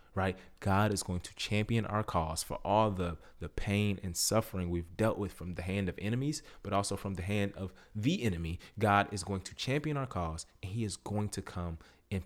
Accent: American